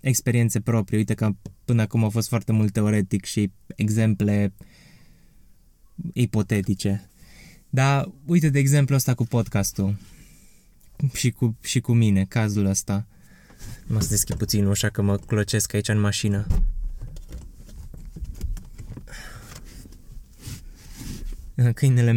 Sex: male